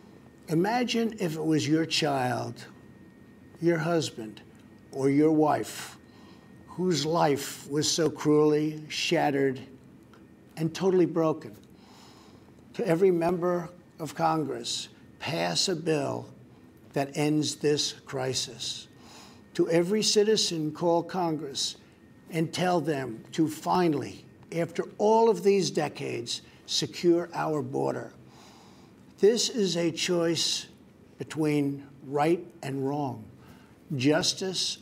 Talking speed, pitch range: 100 wpm, 140-170 Hz